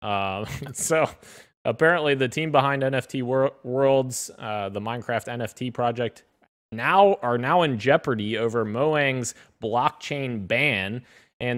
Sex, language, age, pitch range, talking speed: male, English, 20-39, 110-135 Hz, 125 wpm